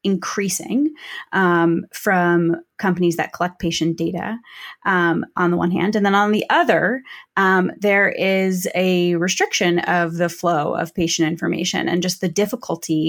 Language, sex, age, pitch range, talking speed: English, female, 20-39, 170-200 Hz, 150 wpm